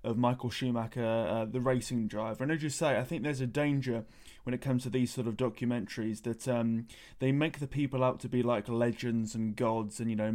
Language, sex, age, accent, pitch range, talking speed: English, male, 20-39, British, 120-140 Hz, 230 wpm